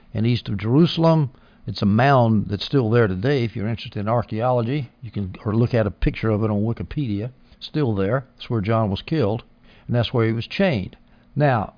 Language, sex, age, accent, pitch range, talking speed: English, male, 60-79, American, 115-150 Hz, 210 wpm